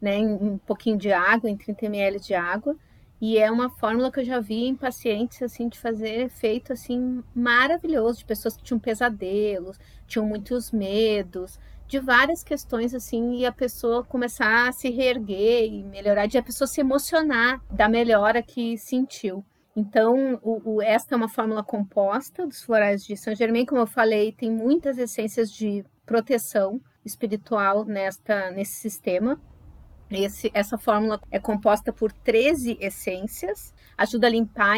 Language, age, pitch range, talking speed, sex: Portuguese, 30-49, 210-245 Hz, 160 wpm, female